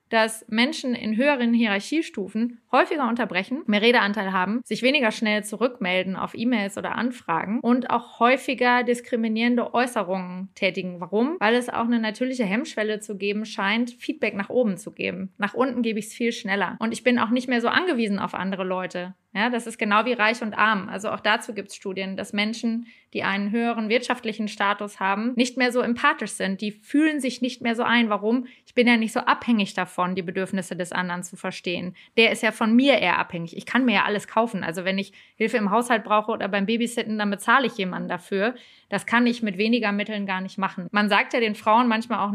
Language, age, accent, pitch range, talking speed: German, 20-39, German, 200-240 Hz, 210 wpm